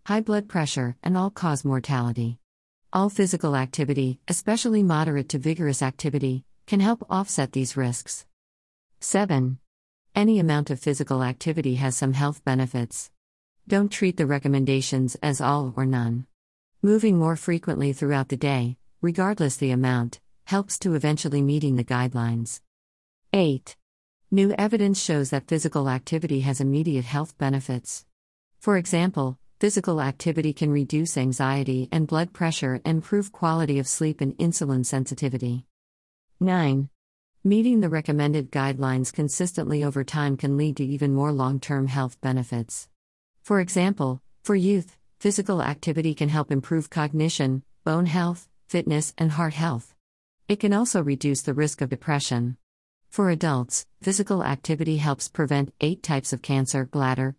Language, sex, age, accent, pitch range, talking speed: English, female, 50-69, American, 130-170 Hz, 135 wpm